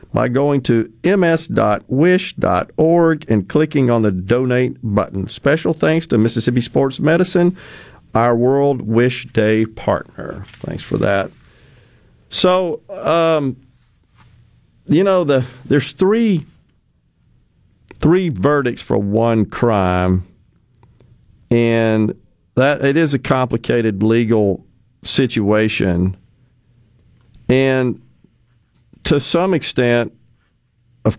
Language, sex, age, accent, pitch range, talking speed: English, male, 50-69, American, 110-135 Hz, 95 wpm